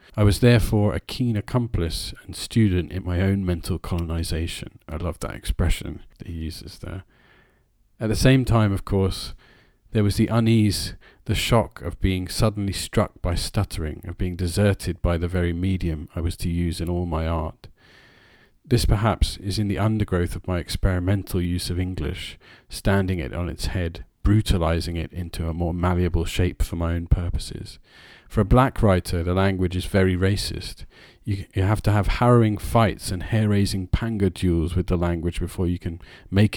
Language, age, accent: English, 40-59, British